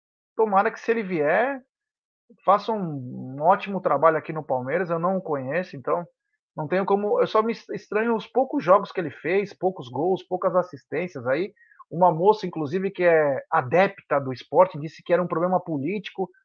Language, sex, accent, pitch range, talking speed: Portuguese, male, Brazilian, 170-220 Hz, 180 wpm